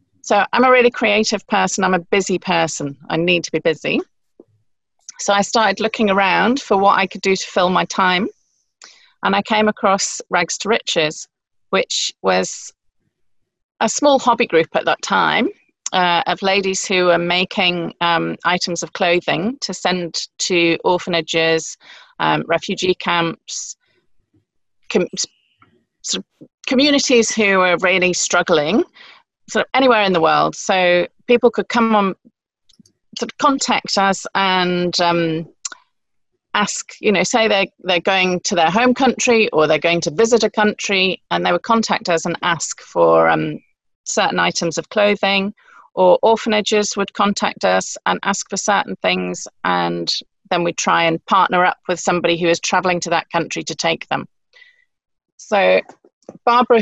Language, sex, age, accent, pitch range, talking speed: English, female, 40-59, British, 170-215 Hz, 155 wpm